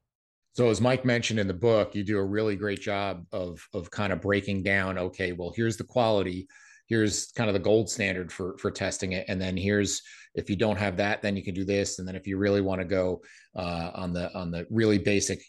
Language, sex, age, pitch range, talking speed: English, male, 30-49, 95-110 Hz, 240 wpm